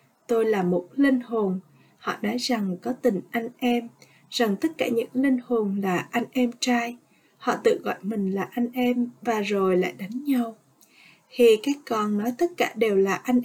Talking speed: 190 wpm